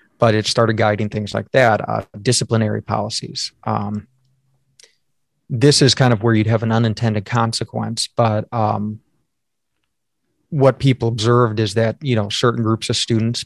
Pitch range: 110-120 Hz